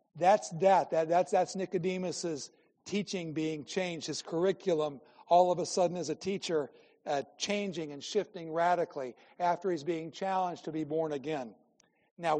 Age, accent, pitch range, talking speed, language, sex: 60-79, American, 150-175 Hz, 155 wpm, English, male